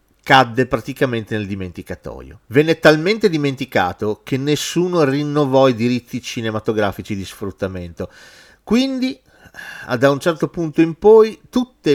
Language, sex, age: Italian, male, 30-49